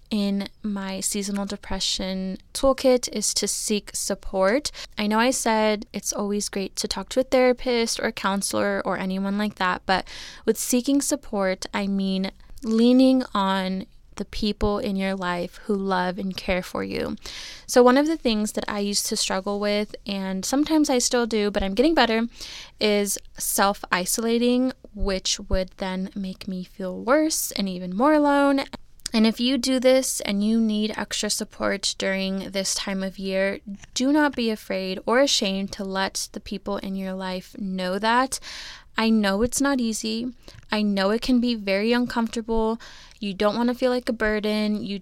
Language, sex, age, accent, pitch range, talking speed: English, female, 20-39, American, 195-240 Hz, 175 wpm